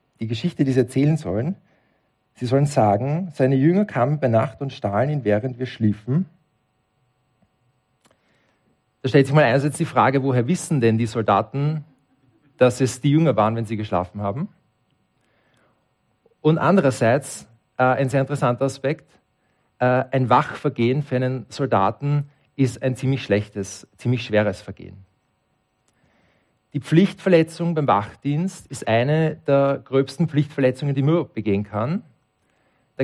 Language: German